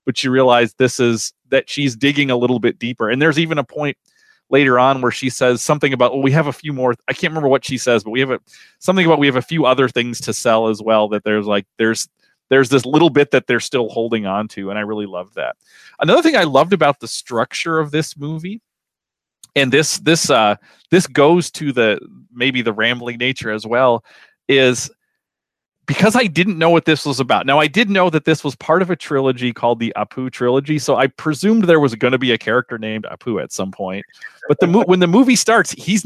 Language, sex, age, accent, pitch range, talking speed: English, male, 40-59, American, 120-165 Hz, 235 wpm